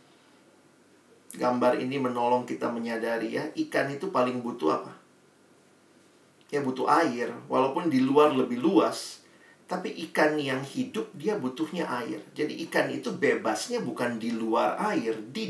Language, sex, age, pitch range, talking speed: Indonesian, male, 40-59, 125-160 Hz, 135 wpm